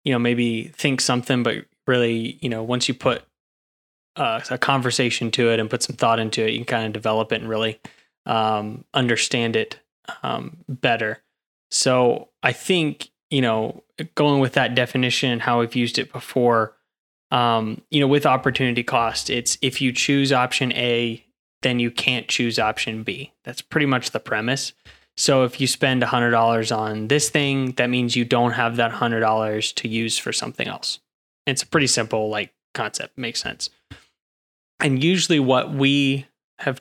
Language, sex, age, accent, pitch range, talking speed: English, male, 20-39, American, 115-135 Hz, 175 wpm